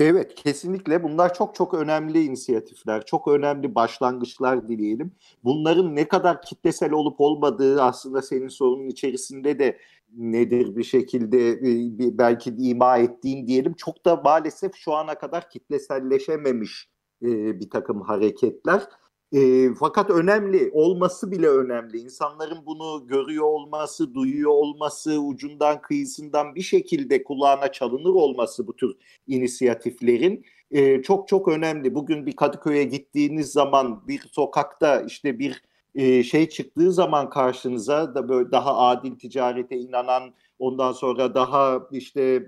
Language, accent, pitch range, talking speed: Turkish, native, 125-160 Hz, 125 wpm